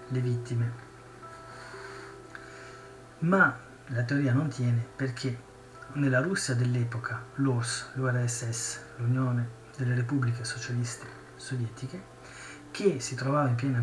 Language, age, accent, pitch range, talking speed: Italian, 30-49, native, 120-140 Hz, 100 wpm